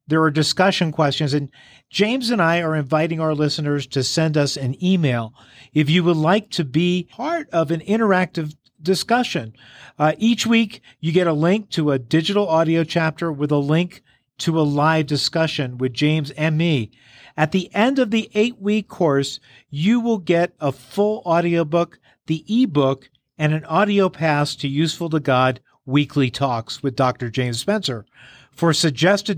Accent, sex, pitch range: American, male, 140-185 Hz